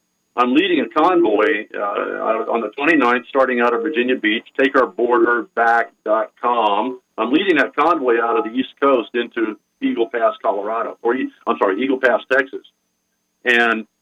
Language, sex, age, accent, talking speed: English, male, 50-69, American, 155 wpm